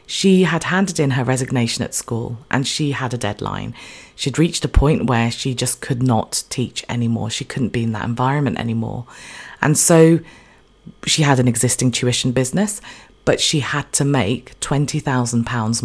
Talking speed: 170 wpm